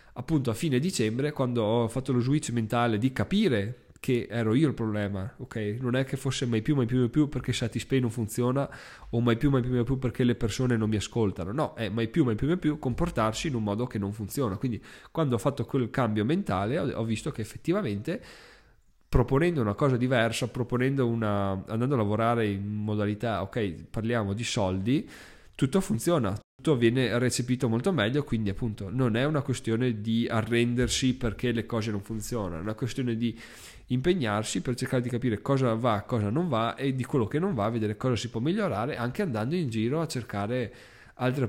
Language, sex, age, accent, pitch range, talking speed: Italian, male, 20-39, native, 110-130 Hz, 200 wpm